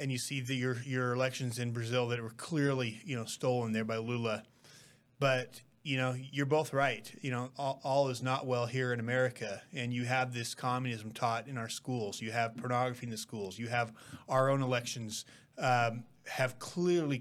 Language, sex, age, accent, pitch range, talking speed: English, male, 30-49, American, 120-135 Hz, 200 wpm